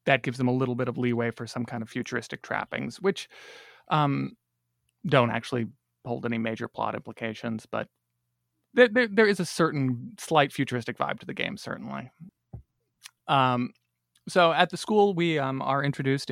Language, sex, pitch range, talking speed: English, male, 115-140 Hz, 165 wpm